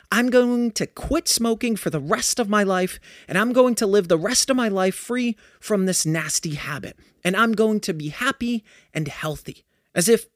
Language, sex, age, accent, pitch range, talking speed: English, male, 30-49, American, 180-240 Hz, 210 wpm